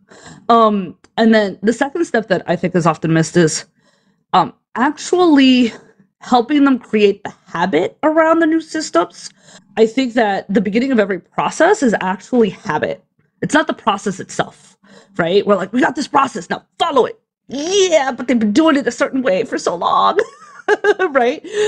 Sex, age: female, 20-39